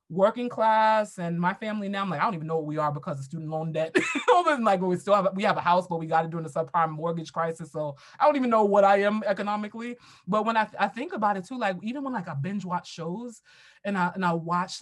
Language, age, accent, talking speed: English, 20-39, American, 265 wpm